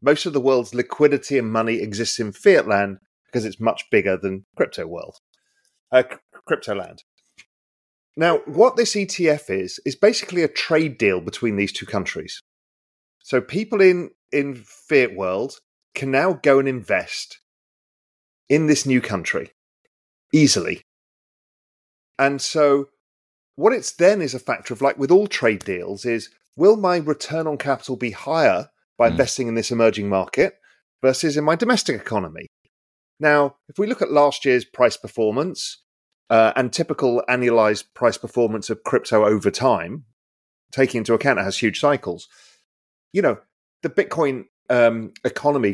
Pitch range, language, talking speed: 110-150 Hz, English, 150 wpm